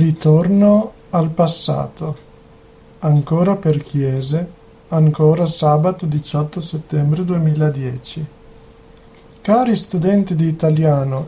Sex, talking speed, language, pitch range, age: male, 80 wpm, Italian, 155-190 Hz, 50-69